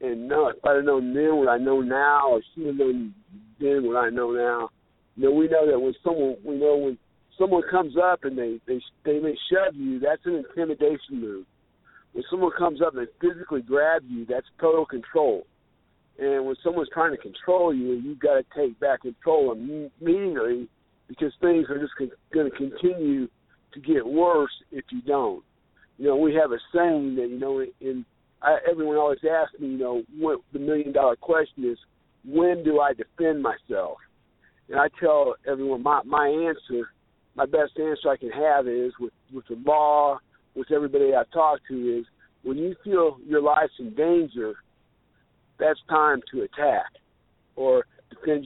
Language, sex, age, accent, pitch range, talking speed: English, male, 50-69, American, 130-170 Hz, 185 wpm